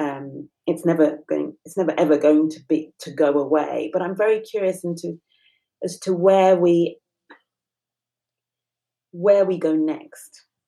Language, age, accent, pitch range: English, 30-49, British, 150-180 Hz